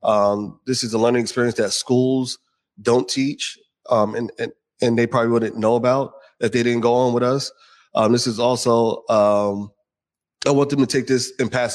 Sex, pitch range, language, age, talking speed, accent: male, 115-130 Hz, English, 20-39, 200 wpm, American